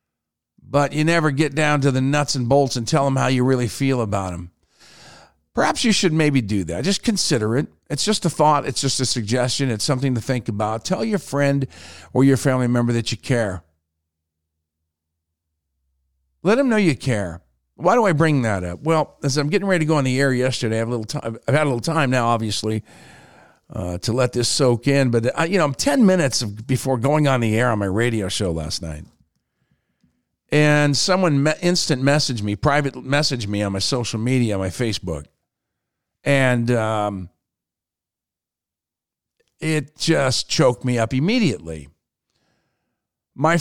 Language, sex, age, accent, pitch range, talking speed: English, male, 50-69, American, 110-150 Hz, 180 wpm